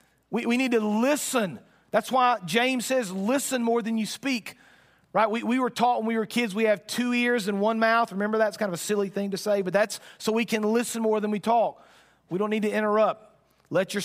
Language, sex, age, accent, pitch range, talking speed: English, male, 40-59, American, 195-230 Hz, 240 wpm